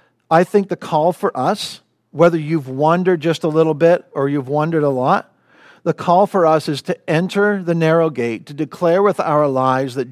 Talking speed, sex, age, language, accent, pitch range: 200 wpm, male, 50-69, English, American, 130-170 Hz